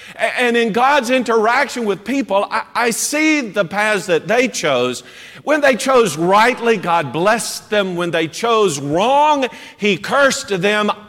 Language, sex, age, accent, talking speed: English, male, 50-69, American, 150 wpm